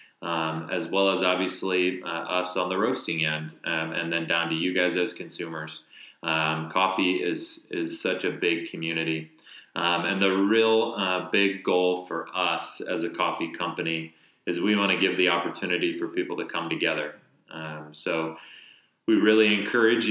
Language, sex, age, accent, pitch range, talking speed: English, male, 20-39, American, 85-105 Hz, 175 wpm